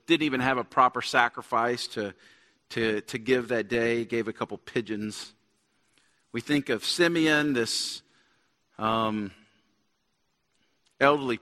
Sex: male